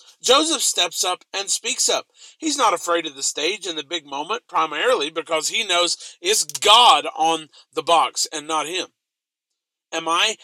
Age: 40-59